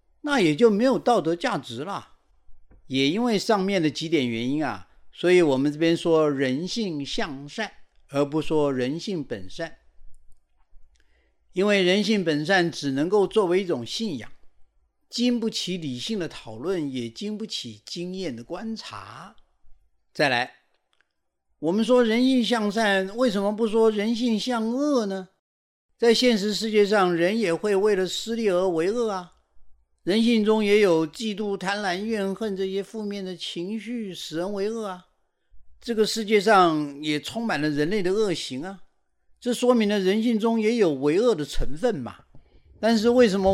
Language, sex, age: Chinese, male, 50-69